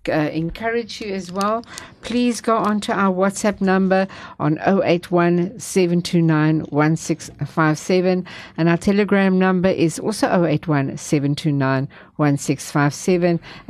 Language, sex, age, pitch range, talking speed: English, female, 60-79, 155-205 Hz, 90 wpm